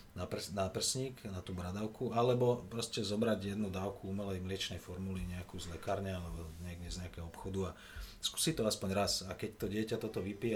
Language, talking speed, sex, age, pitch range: Slovak, 180 wpm, male, 30-49, 95-110 Hz